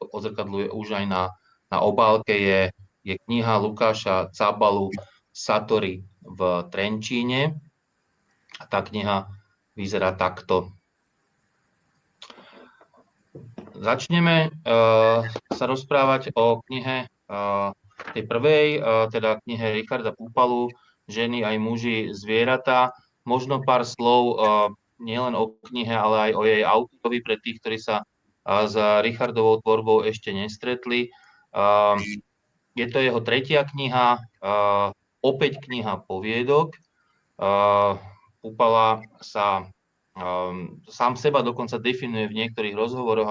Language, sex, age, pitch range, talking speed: Slovak, male, 20-39, 100-120 Hz, 105 wpm